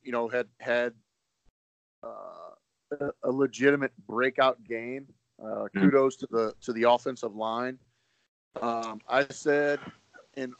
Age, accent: 40-59, American